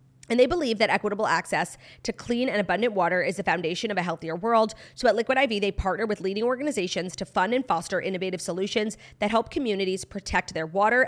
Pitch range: 180-235 Hz